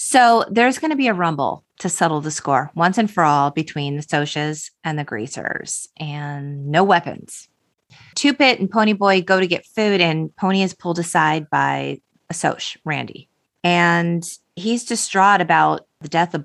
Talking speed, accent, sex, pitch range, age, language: 170 wpm, American, female, 150-205 Hz, 30-49, English